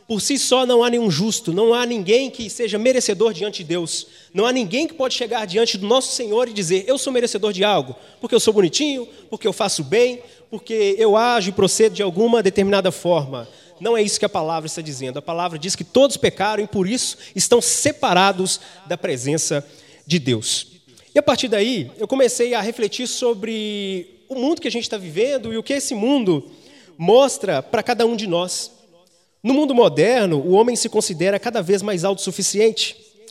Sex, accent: male, Brazilian